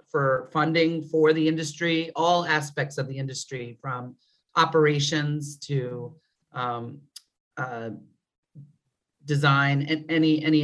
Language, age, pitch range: English, 40-59, 140-165 Hz